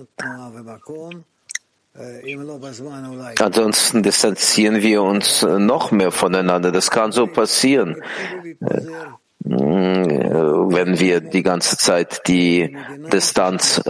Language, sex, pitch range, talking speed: English, male, 95-115 Hz, 80 wpm